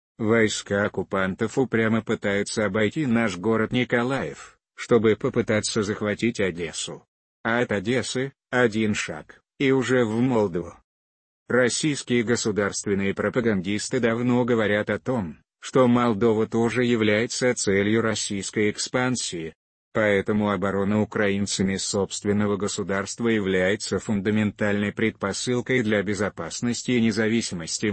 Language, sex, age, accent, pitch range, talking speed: Russian, male, 30-49, native, 100-115 Hz, 100 wpm